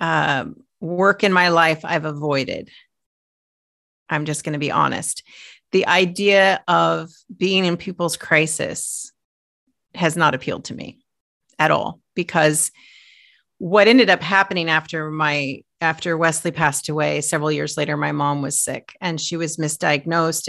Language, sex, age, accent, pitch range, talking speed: English, female, 40-59, American, 155-195 Hz, 145 wpm